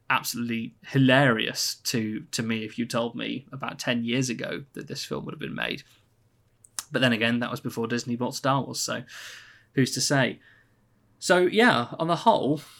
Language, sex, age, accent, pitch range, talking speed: English, male, 20-39, British, 115-140 Hz, 185 wpm